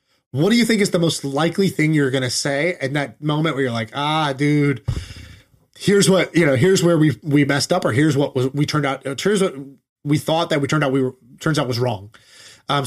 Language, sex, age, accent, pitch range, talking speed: English, male, 20-39, American, 130-165 Hz, 245 wpm